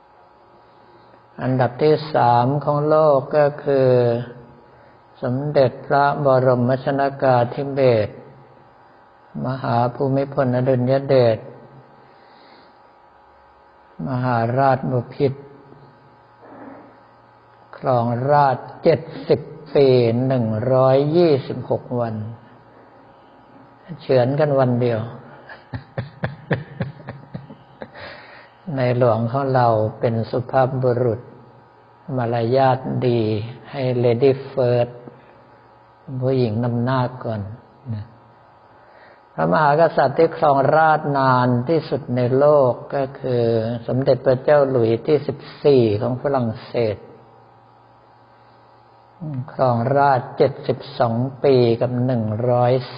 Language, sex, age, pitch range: Thai, male, 60-79, 120-140 Hz